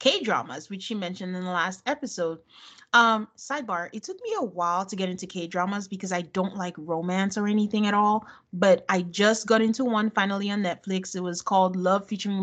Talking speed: 210 wpm